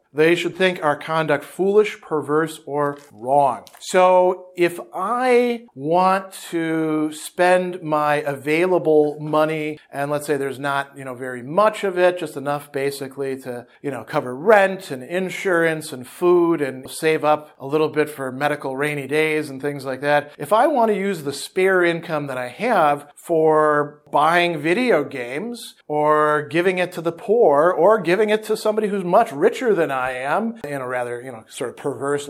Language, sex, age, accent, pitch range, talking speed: English, male, 50-69, American, 145-185 Hz, 180 wpm